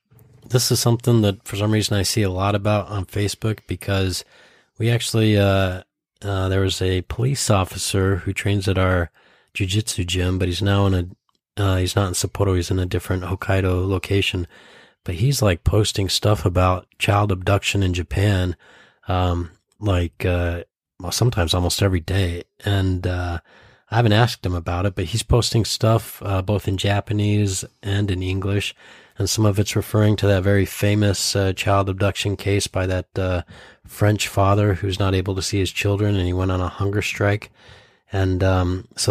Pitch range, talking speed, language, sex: 90-105 Hz, 180 wpm, English, male